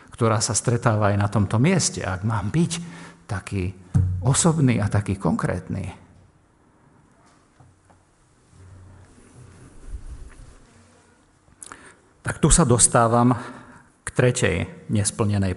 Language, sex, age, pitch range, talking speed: Slovak, male, 50-69, 95-130 Hz, 85 wpm